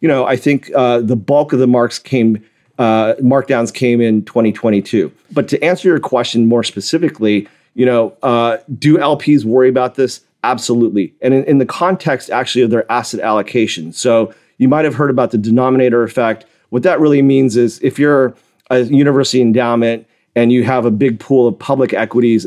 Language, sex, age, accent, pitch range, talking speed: English, male, 30-49, American, 115-135 Hz, 185 wpm